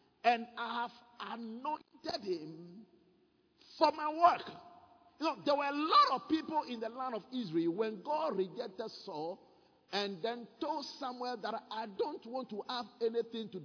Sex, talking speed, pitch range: male, 165 wpm, 220-285 Hz